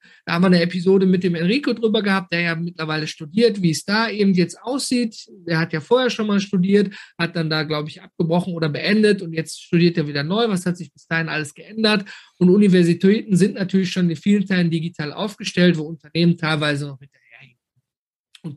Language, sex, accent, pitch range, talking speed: German, male, German, 170-225 Hz, 210 wpm